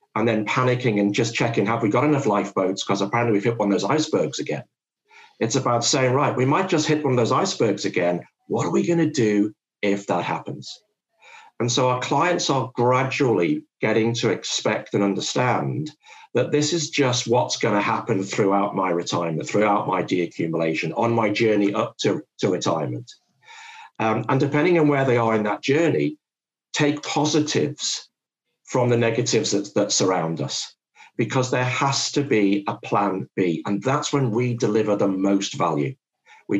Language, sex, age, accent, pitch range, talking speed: English, male, 50-69, British, 100-145 Hz, 180 wpm